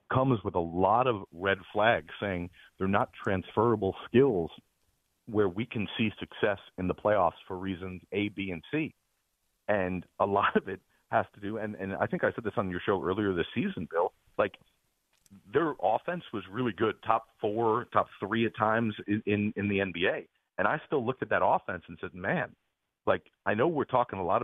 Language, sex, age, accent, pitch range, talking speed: English, male, 40-59, American, 95-120 Hz, 200 wpm